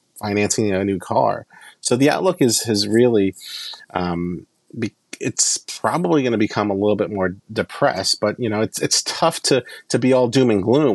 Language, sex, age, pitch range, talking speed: English, male, 30-49, 90-115 Hz, 190 wpm